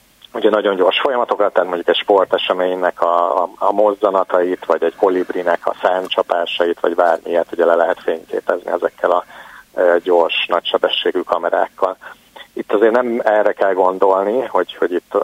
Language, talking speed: Hungarian, 140 wpm